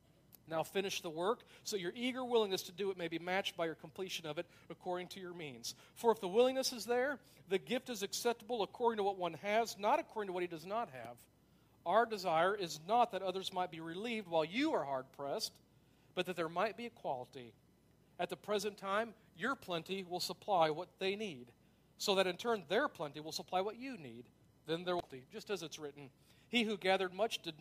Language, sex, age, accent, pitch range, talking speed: English, male, 50-69, American, 165-215 Hz, 215 wpm